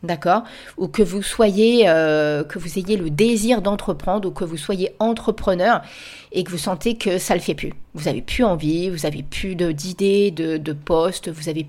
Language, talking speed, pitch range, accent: French, 215 wpm, 165-200 Hz, French